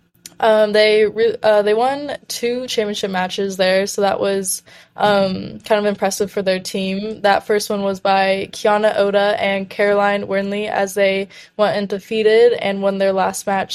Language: English